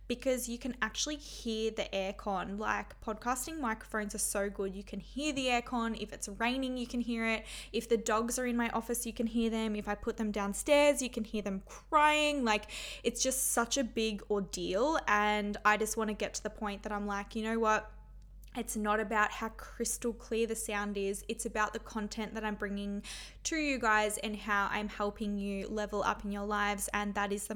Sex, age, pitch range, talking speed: female, 10-29, 210-235 Hz, 220 wpm